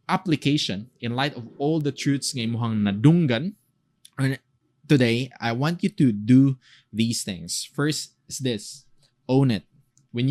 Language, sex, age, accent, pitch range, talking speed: English, male, 20-39, Filipino, 110-150 Hz, 130 wpm